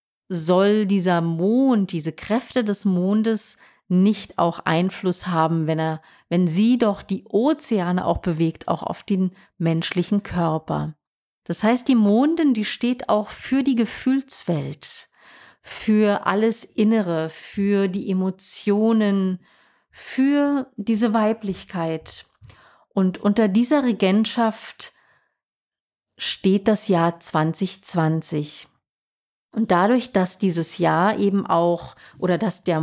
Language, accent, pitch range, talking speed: English, German, 170-225 Hz, 115 wpm